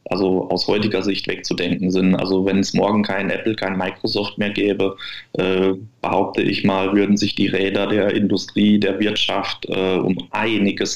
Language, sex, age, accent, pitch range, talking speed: German, male, 20-39, German, 95-105 Hz, 160 wpm